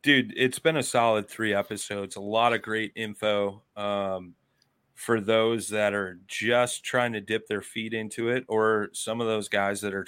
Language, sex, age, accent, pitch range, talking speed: English, male, 30-49, American, 95-110 Hz, 190 wpm